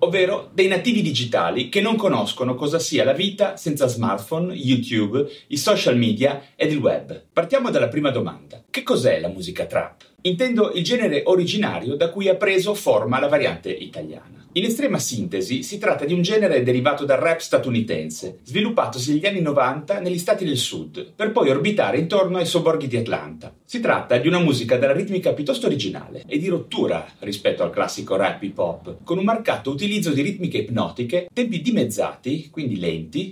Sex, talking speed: male, 175 wpm